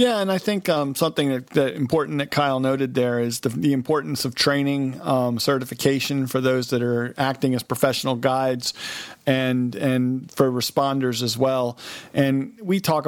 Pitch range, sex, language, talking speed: 125-140 Hz, male, English, 175 wpm